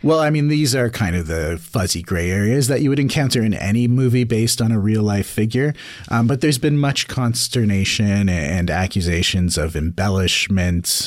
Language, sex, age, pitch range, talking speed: English, male, 30-49, 85-115 Hz, 185 wpm